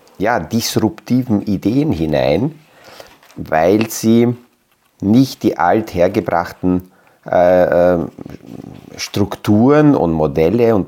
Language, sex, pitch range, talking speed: German, male, 85-105 Hz, 75 wpm